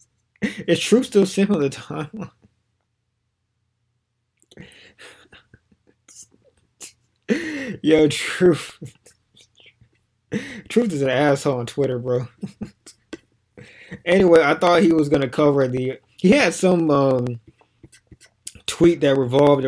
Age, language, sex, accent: 20-39, English, male, American